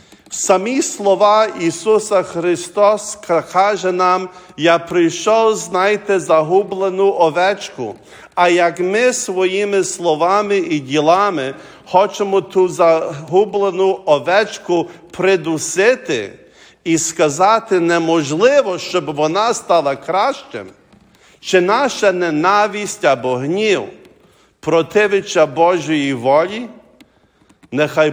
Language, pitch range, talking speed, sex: English, 155-205 Hz, 85 wpm, male